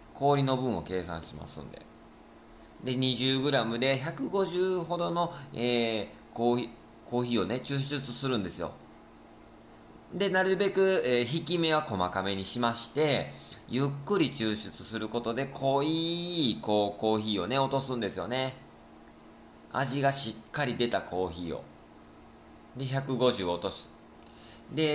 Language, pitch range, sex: Japanese, 105-140 Hz, male